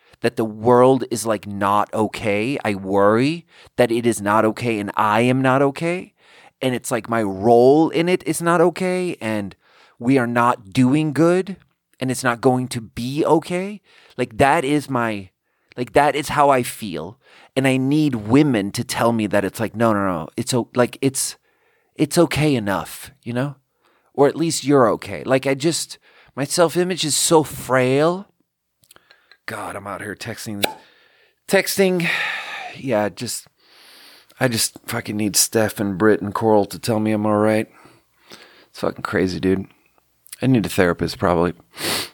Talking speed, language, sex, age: 170 wpm, English, male, 30-49